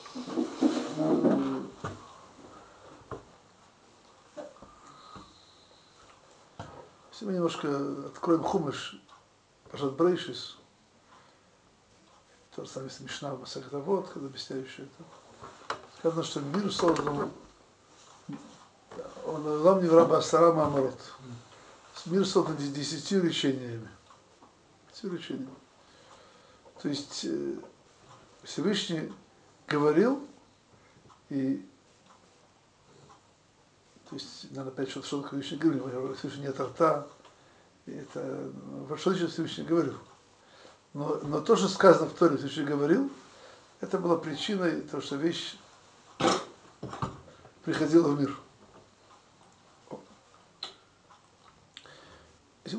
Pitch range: 140-175 Hz